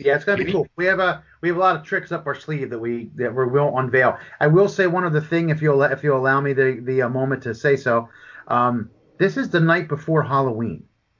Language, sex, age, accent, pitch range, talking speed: English, male, 30-49, American, 130-155 Hz, 270 wpm